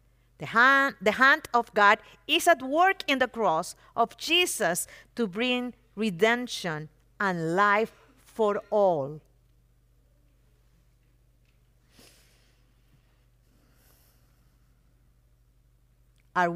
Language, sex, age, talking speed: English, female, 50-69, 75 wpm